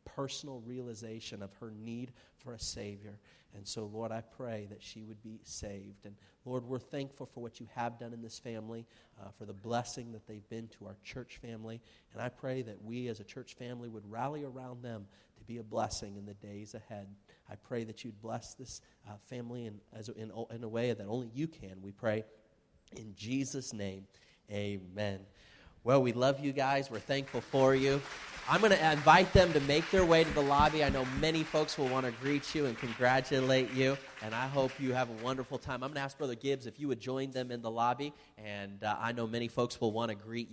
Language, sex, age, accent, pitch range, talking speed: English, male, 30-49, American, 110-130 Hz, 220 wpm